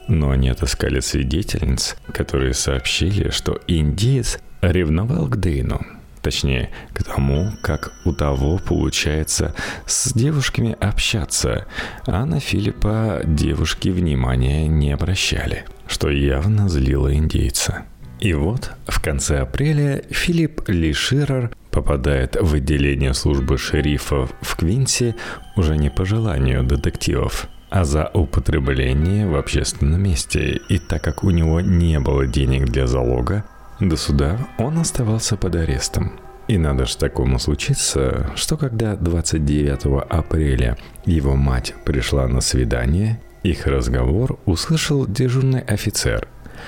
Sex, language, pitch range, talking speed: male, Russian, 70-105 Hz, 120 wpm